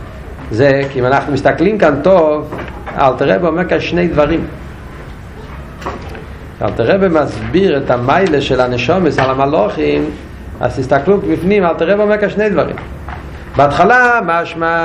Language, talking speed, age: Hebrew, 135 wpm, 50-69